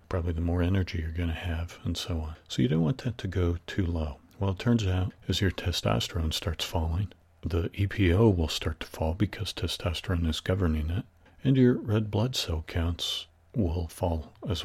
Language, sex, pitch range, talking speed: English, male, 85-100 Hz, 200 wpm